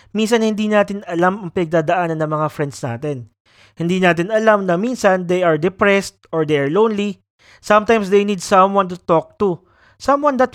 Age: 20-39